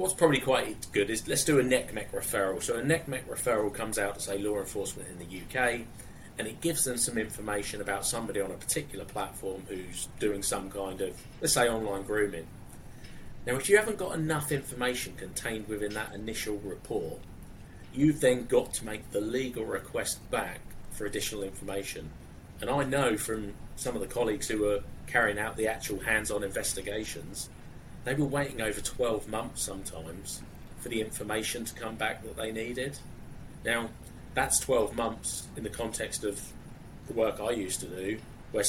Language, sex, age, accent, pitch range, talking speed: English, male, 30-49, British, 100-125 Hz, 180 wpm